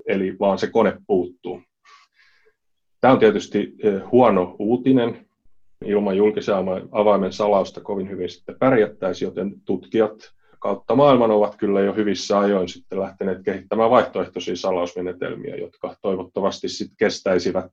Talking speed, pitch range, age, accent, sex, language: 120 wpm, 90-105 Hz, 30-49, native, male, Finnish